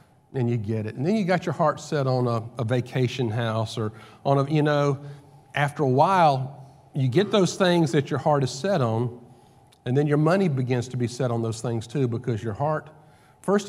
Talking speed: 220 wpm